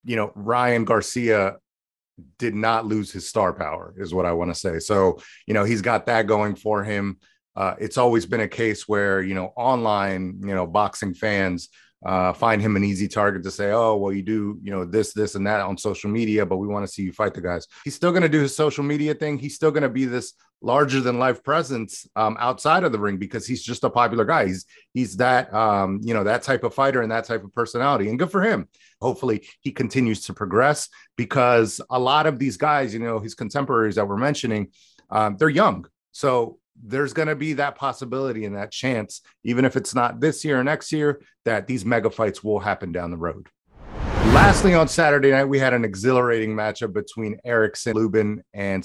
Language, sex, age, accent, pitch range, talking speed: English, male, 30-49, American, 100-125 Hz, 220 wpm